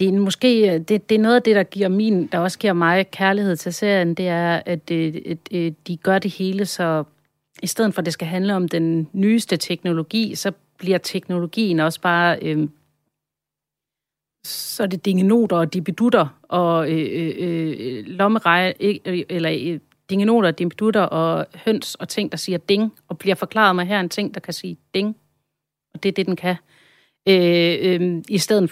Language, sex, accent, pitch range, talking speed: Danish, female, native, 165-195 Hz, 190 wpm